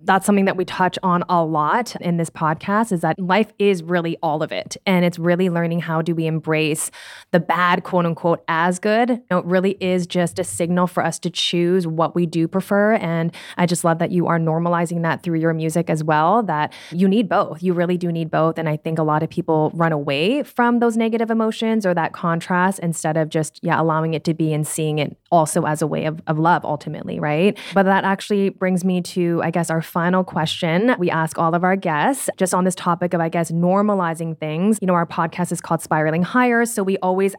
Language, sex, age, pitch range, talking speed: English, female, 20-39, 165-185 Hz, 235 wpm